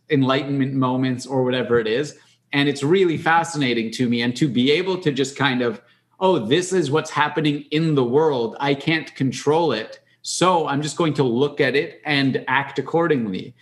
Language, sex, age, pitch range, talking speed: English, male, 30-49, 125-145 Hz, 190 wpm